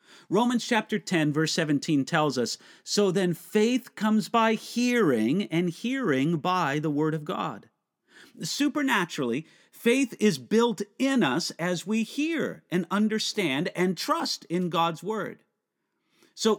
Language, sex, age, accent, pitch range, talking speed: English, male, 50-69, American, 165-235 Hz, 135 wpm